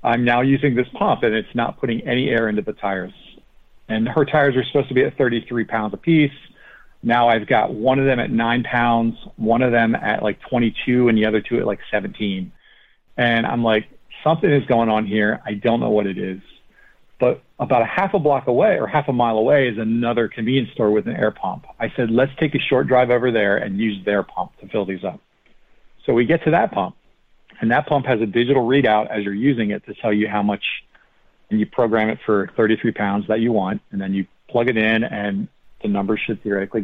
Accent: American